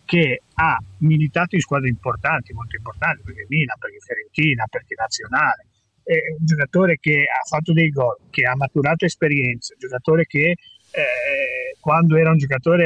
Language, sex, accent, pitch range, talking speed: Italian, male, native, 140-175 Hz, 160 wpm